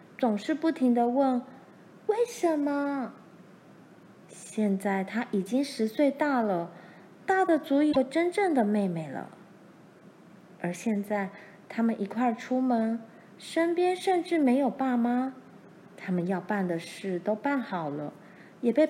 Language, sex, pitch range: Chinese, female, 195-275 Hz